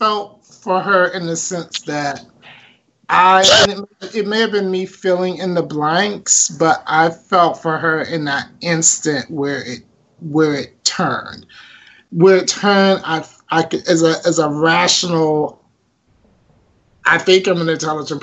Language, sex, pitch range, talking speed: English, male, 145-185 Hz, 150 wpm